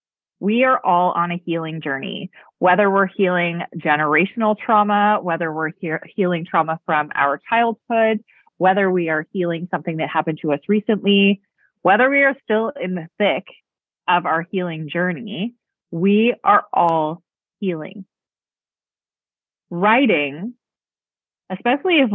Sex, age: female, 30-49